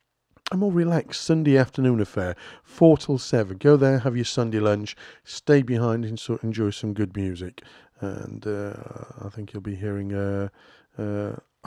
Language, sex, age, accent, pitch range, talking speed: English, male, 40-59, British, 105-140 Hz, 160 wpm